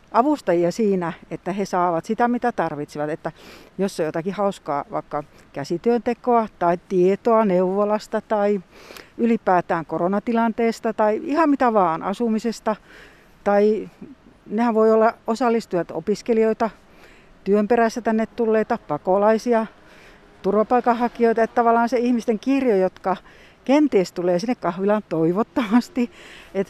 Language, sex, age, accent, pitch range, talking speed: Finnish, female, 60-79, native, 180-235 Hz, 110 wpm